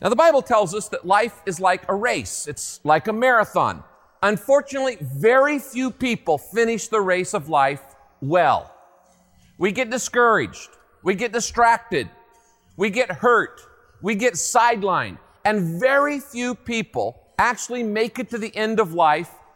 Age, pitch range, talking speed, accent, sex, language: 50-69, 175-240 Hz, 150 wpm, American, male, English